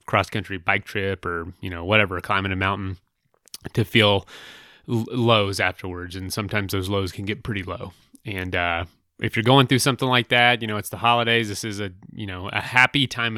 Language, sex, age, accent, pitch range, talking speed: English, male, 30-49, American, 95-115 Hz, 195 wpm